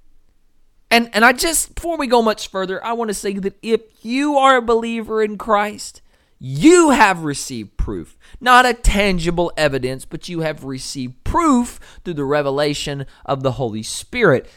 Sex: male